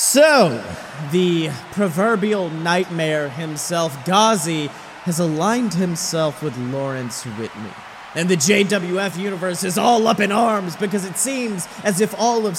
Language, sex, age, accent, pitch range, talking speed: English, male, 30-49, American, 150-190 Hz, 135 wpm